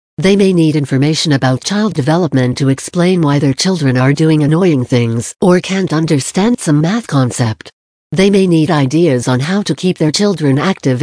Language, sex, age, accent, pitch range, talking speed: English, female, 60-79, American, 135-180 Hz, 180 wpm